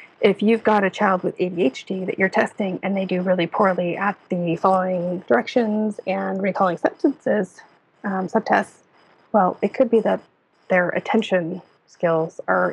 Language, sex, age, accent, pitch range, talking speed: English, female, 30-49, American, 175-220 Hz, 150 wpm